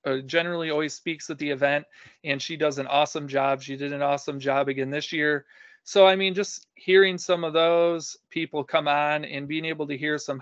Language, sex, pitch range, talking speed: English, male, 135-150 Hz, 215 wpm